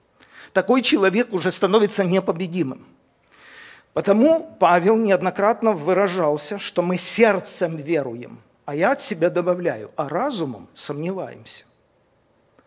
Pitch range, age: 160-200 Hz, 50-69